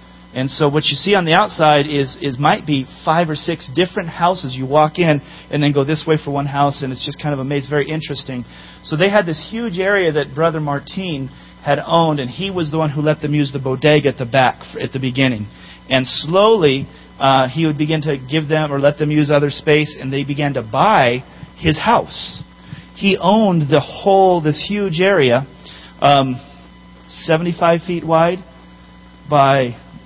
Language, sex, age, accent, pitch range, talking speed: English, male, 40-59, American, 135-160 Hz, 195 wpm